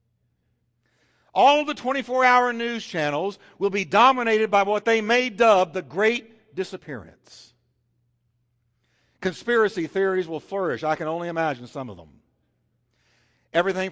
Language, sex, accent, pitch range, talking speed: English, male, American, 145-235 Hz, 125 wpm